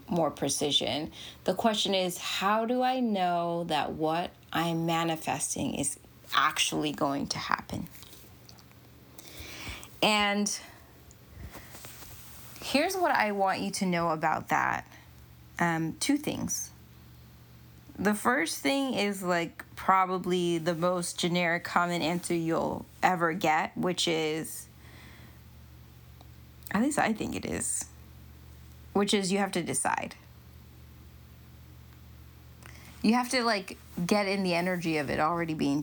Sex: female